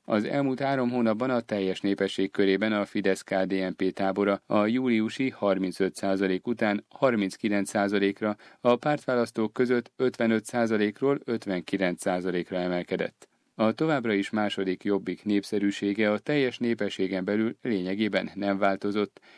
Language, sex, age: Hungarian, male, 30-49